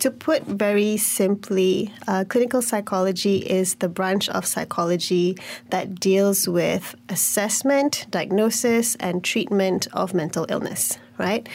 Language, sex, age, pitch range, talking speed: English, female, 20-39, 185-225 Hz, 120 wpm